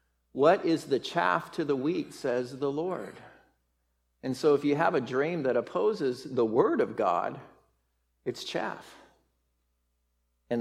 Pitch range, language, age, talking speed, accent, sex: 125-175 Hz, English, 50-69, 145 wpm, American, male